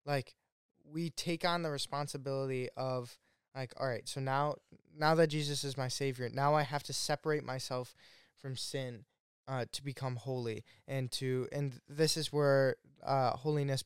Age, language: 10-29, English